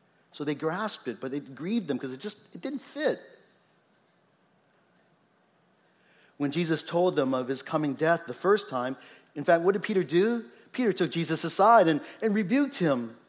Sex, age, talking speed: male, 40-59, 170 wpm